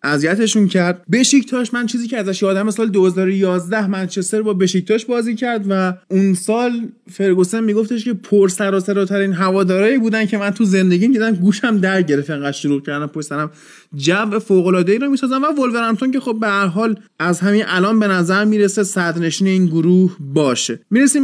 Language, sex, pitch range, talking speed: Persian, male, 185-230 Hz, 165 wpm